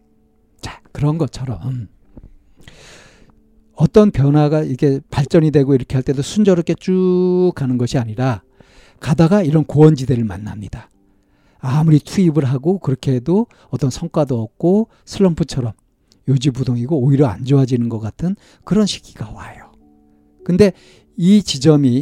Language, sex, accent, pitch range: Korean, male, native, 120-165 Hz